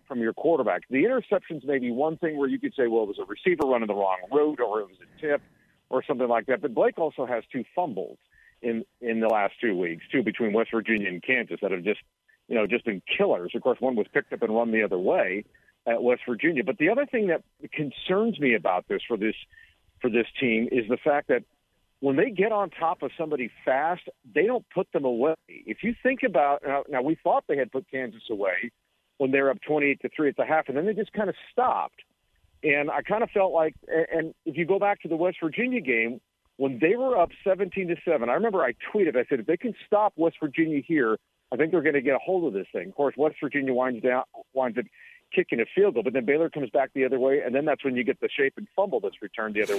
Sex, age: male, 50-69